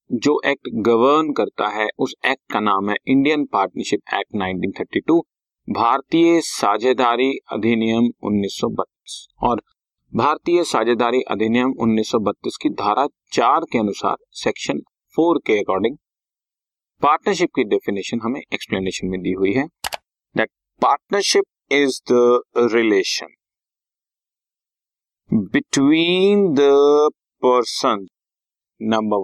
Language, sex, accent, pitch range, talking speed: Hindi, male, native, 115-175 Hz, 95 wpm